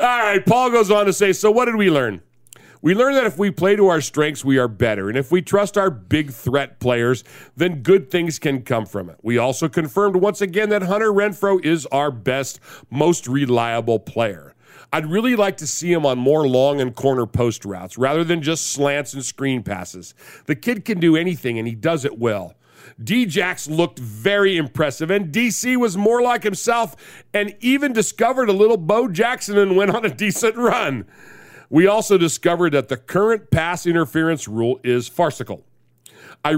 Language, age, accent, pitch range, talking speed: English, 50-69, American, 135-200 Hz, 195 wpm